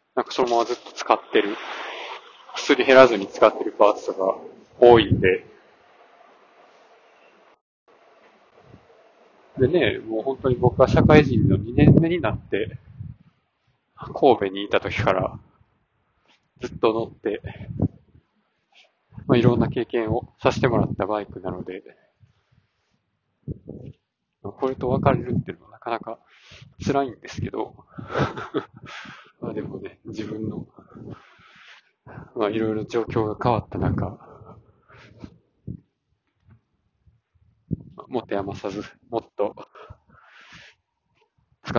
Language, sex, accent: Japanese, male, native